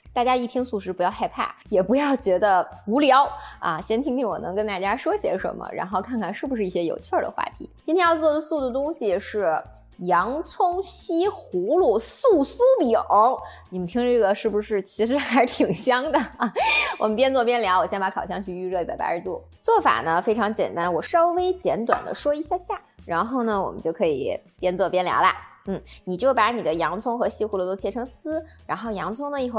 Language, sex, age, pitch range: Chinese, female, 20-39, 195-285 Hz